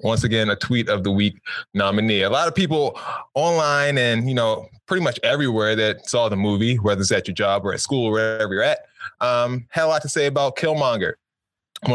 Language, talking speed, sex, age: English, 220 wpm, male, 20-39